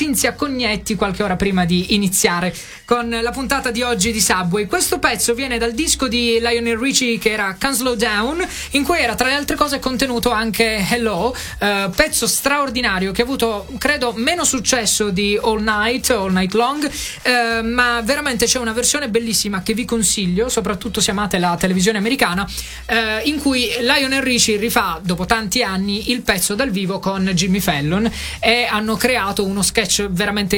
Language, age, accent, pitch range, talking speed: Italian, 20-39, native, 195-250 Hz, 175 wpm